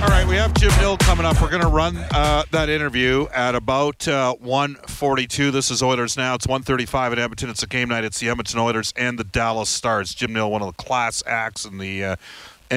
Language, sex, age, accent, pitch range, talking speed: English, male, 50-69, American, 95-125 Hz, 230 wpm